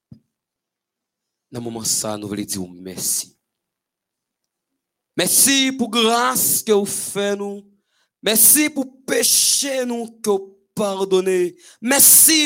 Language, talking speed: French, 105 wpm